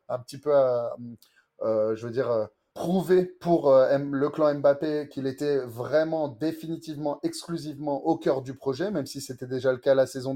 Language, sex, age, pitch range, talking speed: French, male, 30-49, 125-145 Hz, 190 wpm